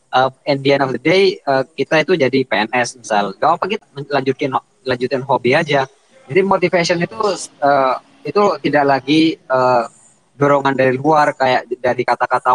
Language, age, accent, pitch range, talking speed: Indonesian, 20-39, native, 130-160 Hz, 165 wpm